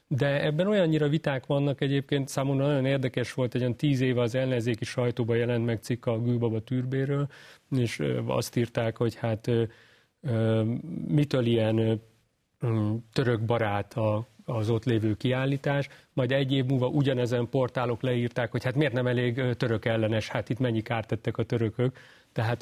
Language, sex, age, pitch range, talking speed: Hungarian, male, 40-59, 110-130 Hz, 155 wpm